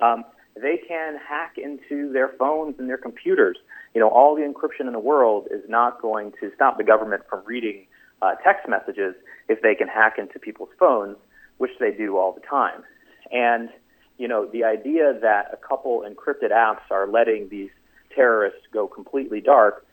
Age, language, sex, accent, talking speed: 30-49, English, male, American, 180 wpm